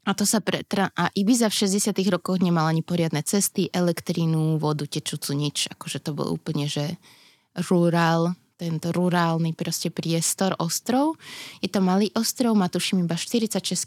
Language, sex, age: Slovak, female, 20-39